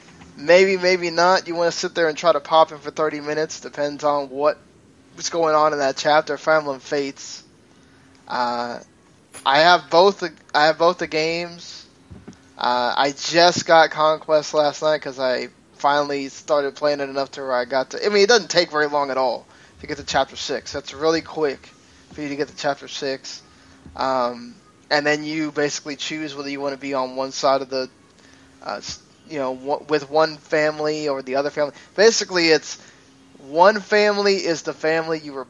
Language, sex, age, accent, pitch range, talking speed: English, male, 10-29, American, 140-165 Hz, 195 wpm